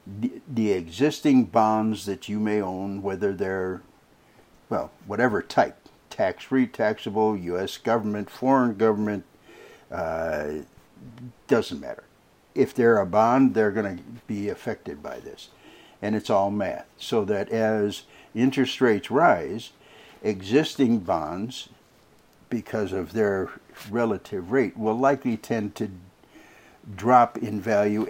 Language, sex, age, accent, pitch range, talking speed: English, male, 60-79, American, 100-125 Hz, 120 wpm